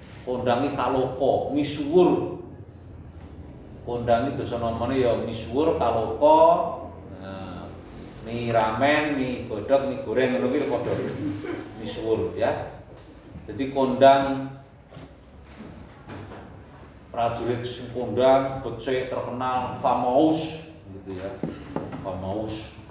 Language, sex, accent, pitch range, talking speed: Indonesian, male, native, 115-150 Hz, 95 wpm